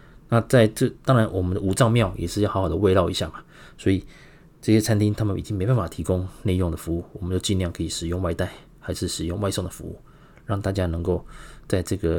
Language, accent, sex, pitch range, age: Chinese, native, male, 90-115 Hz, 20-39